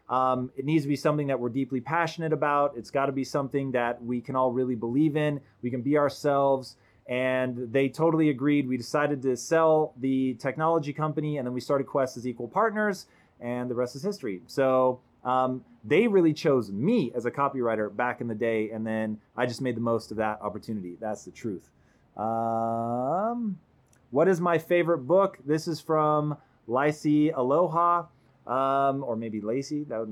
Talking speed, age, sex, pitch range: 185 wpm, 30-49, male, 125-150 Hz